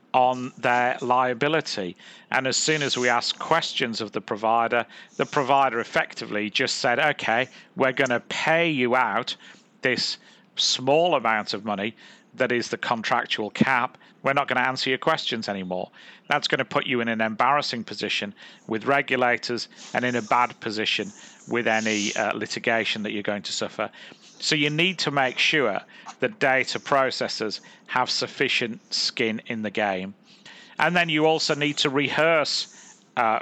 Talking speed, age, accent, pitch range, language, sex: 165 wpm, 40-59, British, 120-145 Hz, English, male